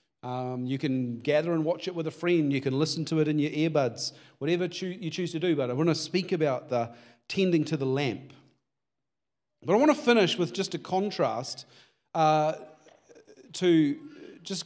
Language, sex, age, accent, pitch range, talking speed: English, male, 40-59, Australian, 140-175 Hz, 190 wpm